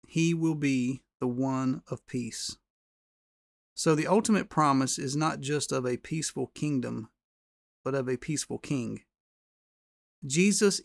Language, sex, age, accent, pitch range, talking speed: English, male, 40-59, American, 130-150 Hz, 135 wpm